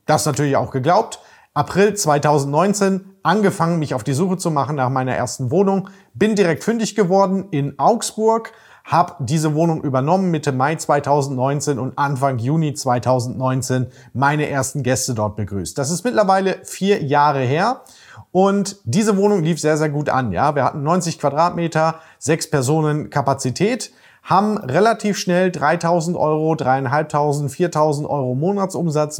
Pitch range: 135-175 Hz